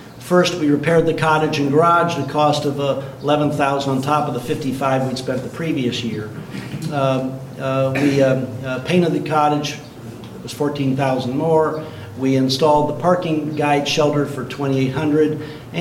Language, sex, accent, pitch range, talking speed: English, male, American, 130-150 Hz, 160 wpm